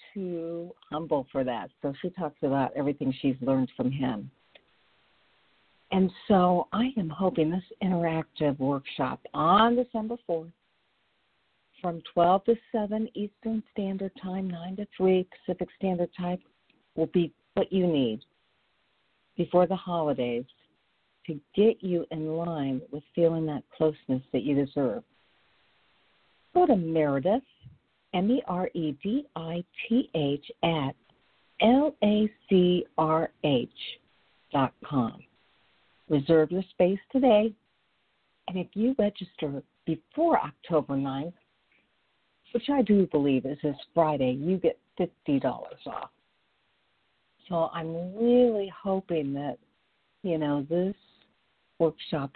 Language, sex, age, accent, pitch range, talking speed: English, female, 50-69, American, 150-195 Hz, 110 wpm